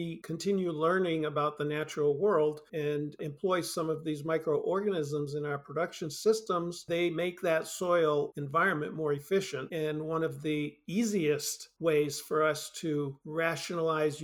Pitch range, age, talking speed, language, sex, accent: 150-180 Hz, 50-69, 140 wpm, English, male, American